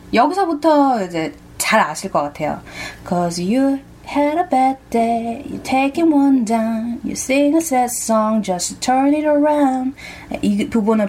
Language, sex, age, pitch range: Korean, female, 20-39, 175-260 Hz